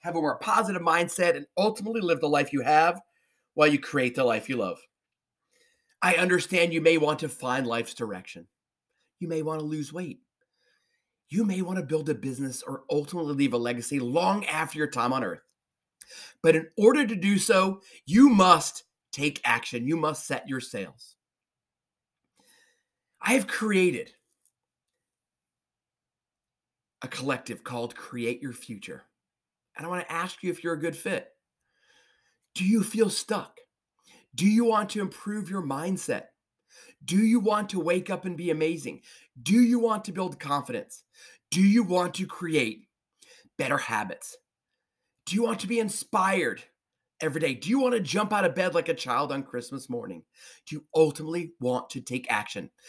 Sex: male